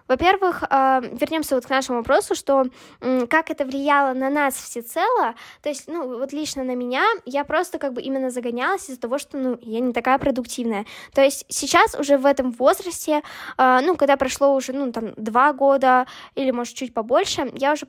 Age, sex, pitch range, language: 10-29, female, 250-295 Hz, Russian